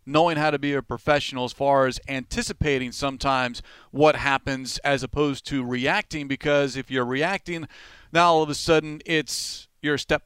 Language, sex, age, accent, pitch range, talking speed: English, male, 40-59, American, 135-155 Hz, 175 wpm